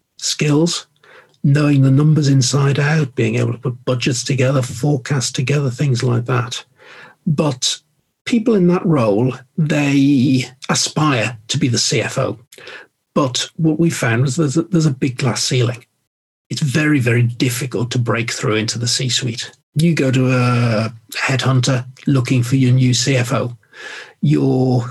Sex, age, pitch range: male, 50-69, 125-150 Hz